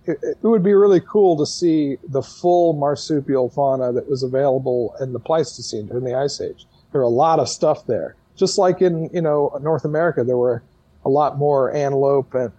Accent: American